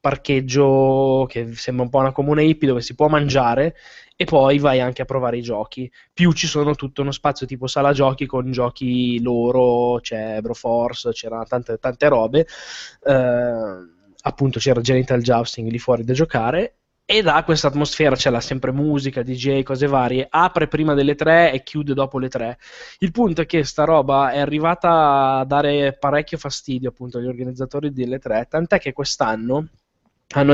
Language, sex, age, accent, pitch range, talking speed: Italian, male, 20-39, native, 130-155 Hz, 170 wpm